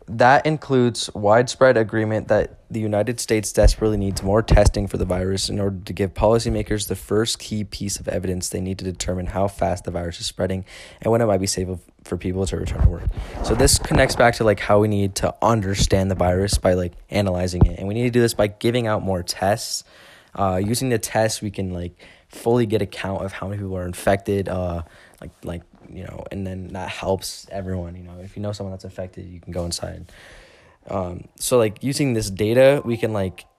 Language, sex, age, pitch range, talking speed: English, male, 20-39, 90-110 Hz, 220 wpm